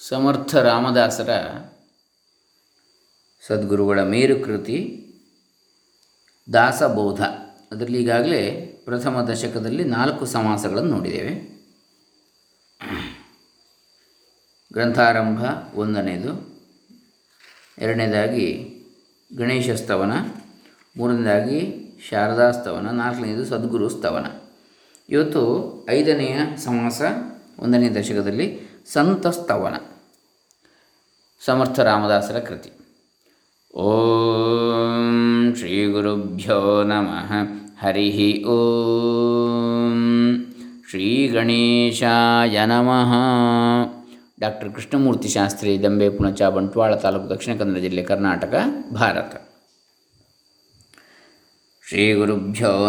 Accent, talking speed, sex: native, 55 wpm, male